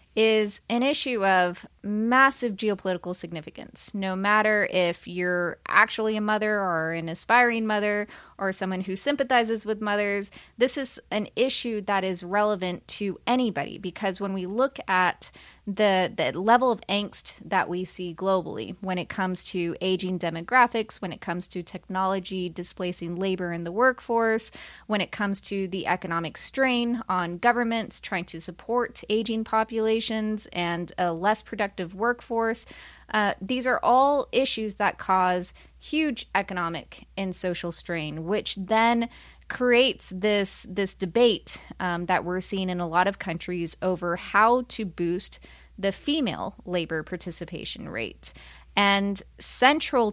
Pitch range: 180-220 Hz